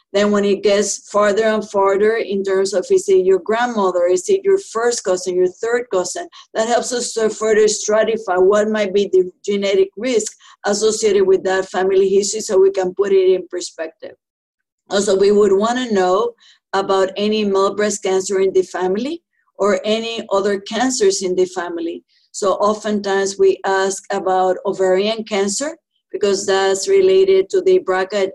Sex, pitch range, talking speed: female, 185-220 Hz, 165 wpm